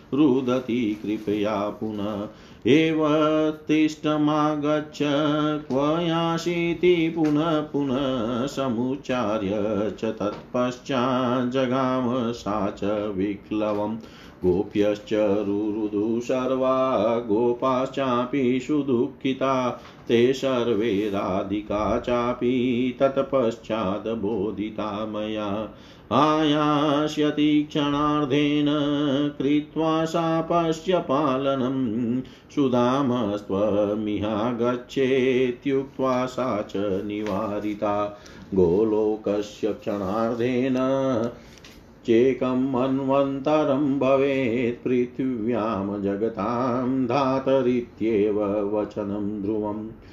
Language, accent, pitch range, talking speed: Hindi, native, 105-140 Hz, 35 wpm